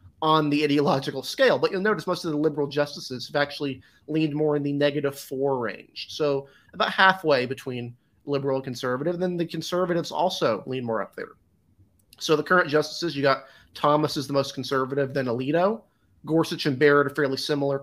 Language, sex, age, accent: English, male, 30-49, American